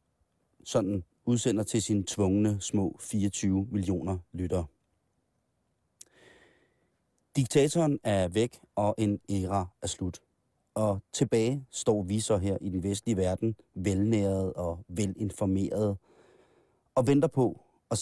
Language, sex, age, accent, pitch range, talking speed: Danish, male, 30-49, native, 100-120 Hz, 115 wpm